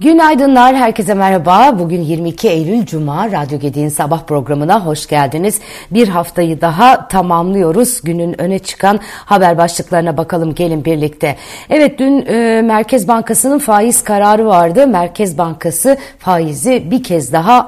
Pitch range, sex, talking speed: 170-220 Hz, female, 130 wpm